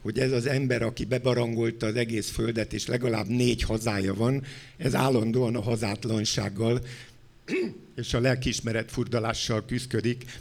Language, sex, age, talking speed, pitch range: Hungarian, male, 60-79, 135 wpm, 115-140 Hz